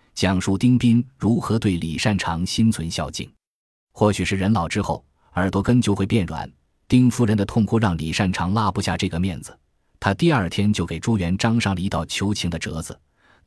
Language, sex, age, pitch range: Chinese, male, 20-39, 85-115 Hz